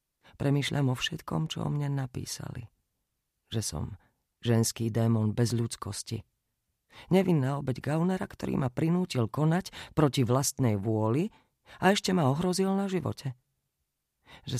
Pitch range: 115-150 Hz